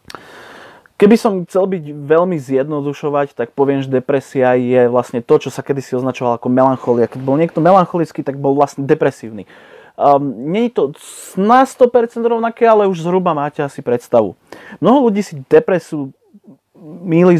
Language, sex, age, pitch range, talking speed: Slovak, male, 30-49, 130-170 Hz, 155 wpm